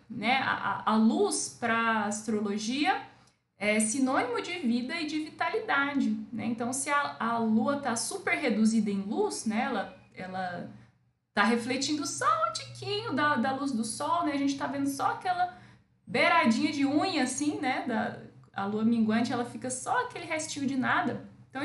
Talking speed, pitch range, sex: 170 wpm, 225-295 Hz, female